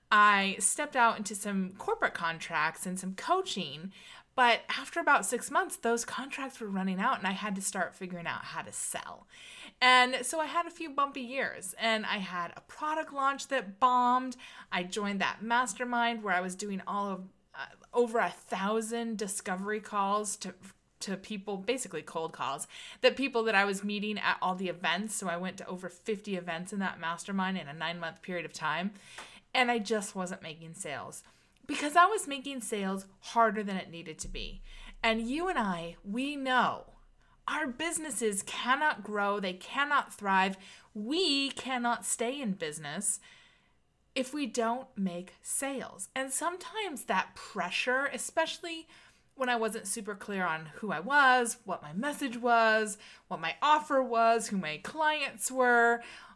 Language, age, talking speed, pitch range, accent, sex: English, 20-39, 170 wpm, 190-260 Hz, American, female